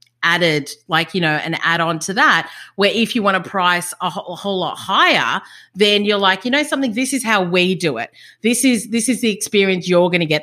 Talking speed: 240 wpm